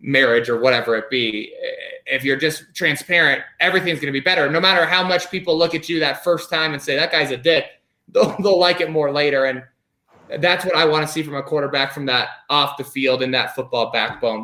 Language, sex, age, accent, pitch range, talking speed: English, male, 20-39, American, 135-185 Hz, 235 wpm